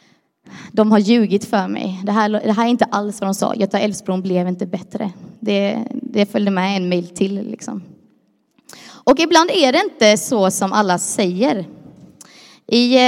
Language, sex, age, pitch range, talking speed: Swedish, female, 20-39, 200-250 Hz, 165 wpm